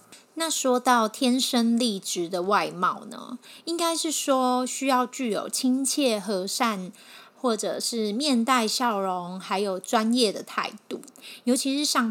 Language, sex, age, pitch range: Chinese, female, 20-39, 195-250 Hz